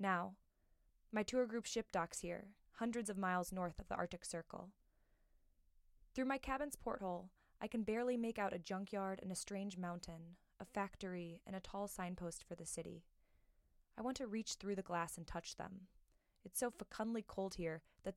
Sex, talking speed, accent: female, 180 wpm, American